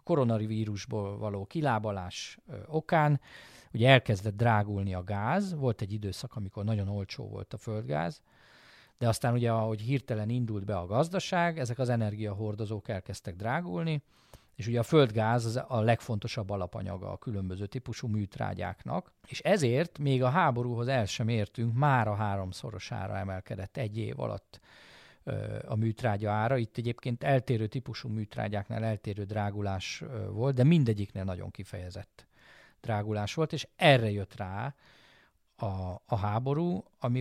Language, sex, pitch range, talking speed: Hungarian, male, 105-130 Hz, 135 wpm